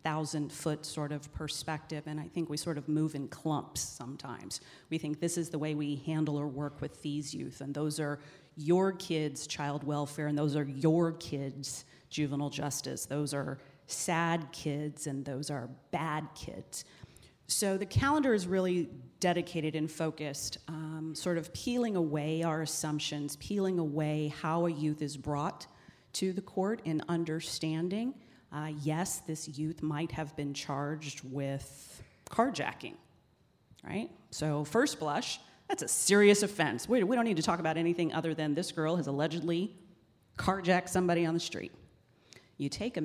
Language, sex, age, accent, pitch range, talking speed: English, female, 40-59, American, 145-165 Hz, 165 wpm